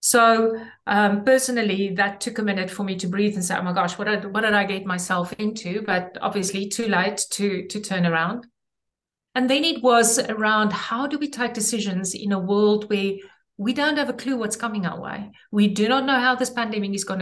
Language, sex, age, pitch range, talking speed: English, female, 50-69, 185-225 Hz, 220 wpm